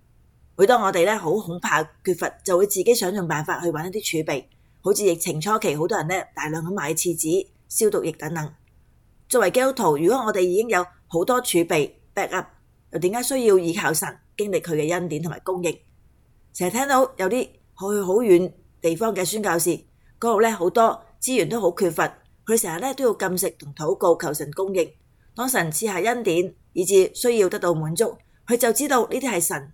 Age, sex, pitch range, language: 20-39, female, 165-225 Hz, Chinese